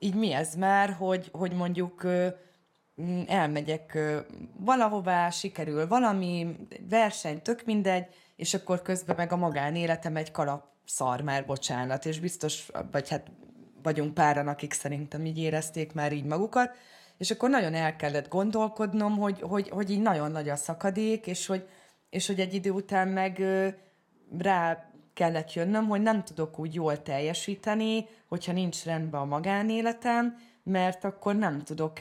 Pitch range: 155-190 Hz